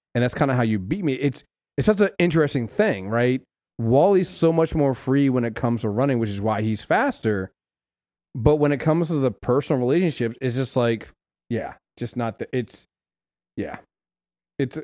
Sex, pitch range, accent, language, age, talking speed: male, 110-140 Hz, American, English, 30-49, 195 wpm